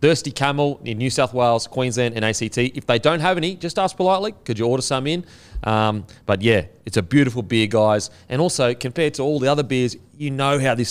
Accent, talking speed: Australian, 230 wpm